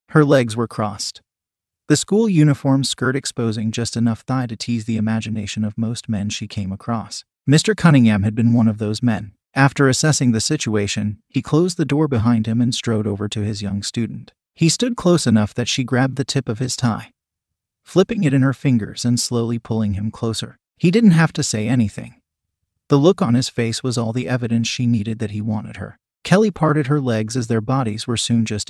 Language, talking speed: English, 210 wpm